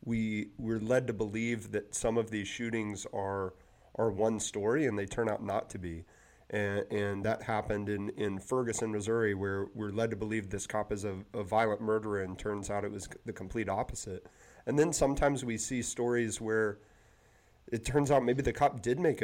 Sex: male